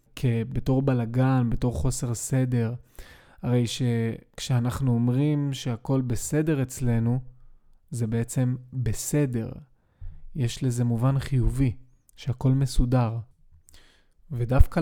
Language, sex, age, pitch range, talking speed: Hebrew, male, 20-39, 115-145 Hz, 85 wpm